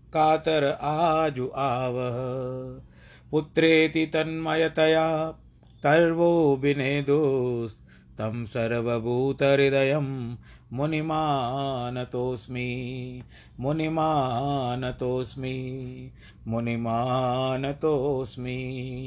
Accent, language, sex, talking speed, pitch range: native, Hindi, male, 40 wpm, 110-145 Hz